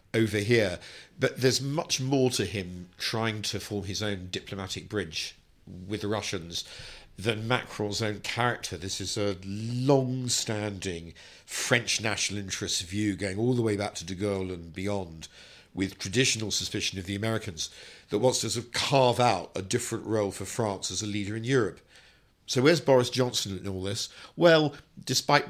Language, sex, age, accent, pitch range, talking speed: English, male, 50-69, British, 95-115 Hz, 170 wpm